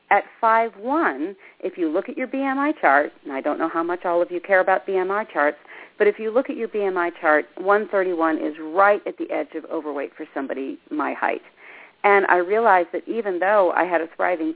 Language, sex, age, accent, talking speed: English, female, 40-59, American, 215 wpm